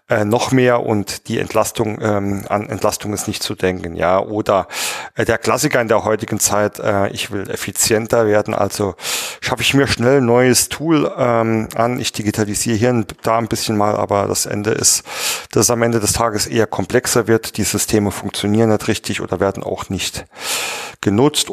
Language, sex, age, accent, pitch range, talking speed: German, male, 40-59, German, 100-120 Hz, 190 wpm